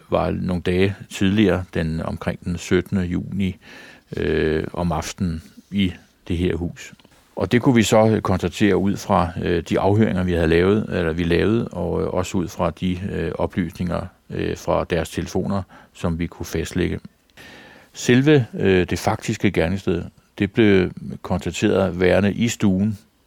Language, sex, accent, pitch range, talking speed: Danish, male, native, 90-105 Hz, 155 wpm